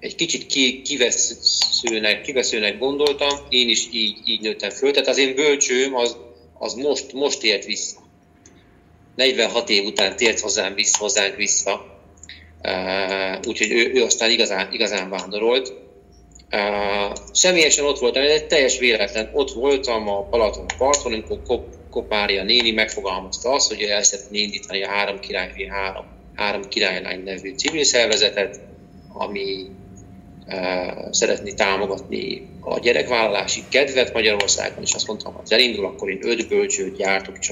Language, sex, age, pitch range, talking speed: Hungarian, male, 40-59, 95-130 Hz, 135 wpm